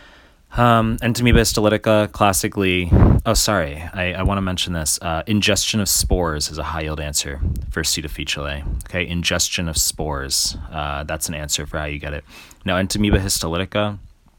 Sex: male